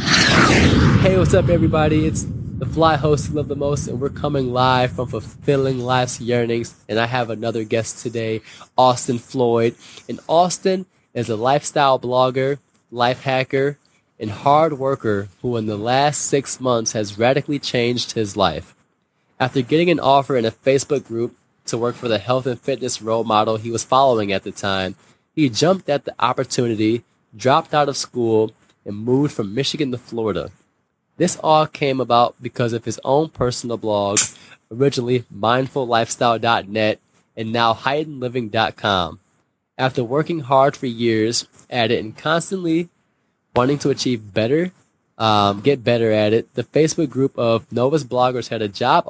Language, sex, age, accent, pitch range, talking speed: English, male, 20-39, American, 115-140 Hz, 160 wpm